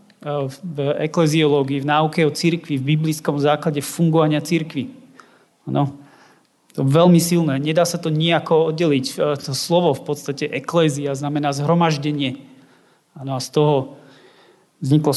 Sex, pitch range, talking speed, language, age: male, 150-170 Hz, 125 wpm, Slovak, 30-49